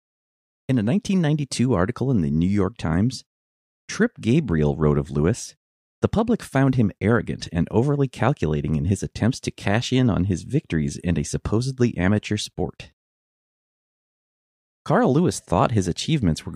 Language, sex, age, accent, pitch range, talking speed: English, male, 30-49, American, 75-120 Hz, 150 wpm